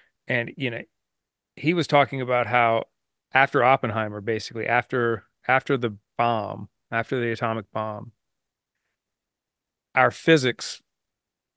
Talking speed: 110 wpm